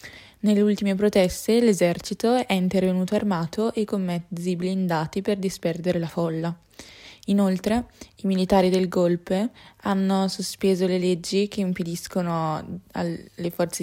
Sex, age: female, 20-39